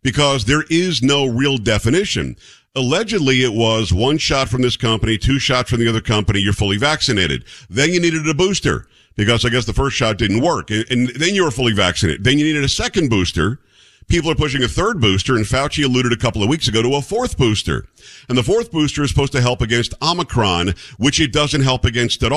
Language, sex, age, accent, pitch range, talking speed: English, male, 50-69, American, 105-135 Hz, 220 wpm